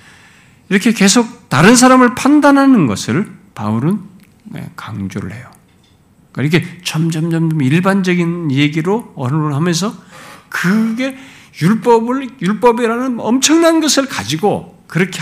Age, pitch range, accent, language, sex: 50-69, 125-195 Hz, native, Korean, male